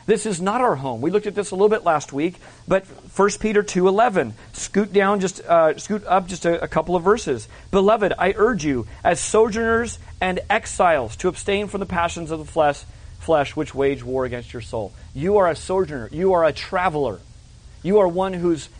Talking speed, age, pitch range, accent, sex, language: 210 wpm, 40-59, 130-190 Hz, American, male, English